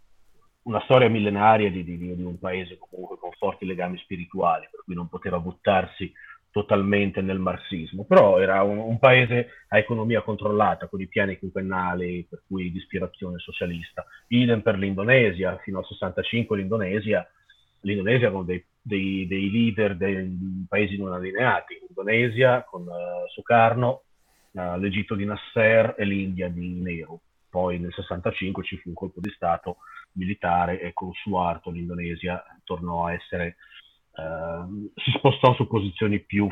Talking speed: 150 wpm